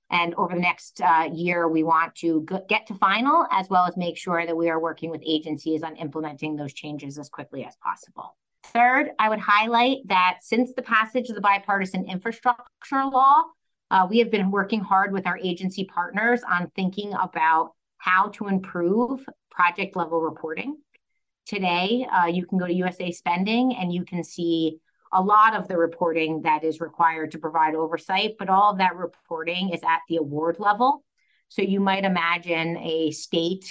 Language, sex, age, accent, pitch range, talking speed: English, female, 30-49, American, 165-205 Hz, 180 wpm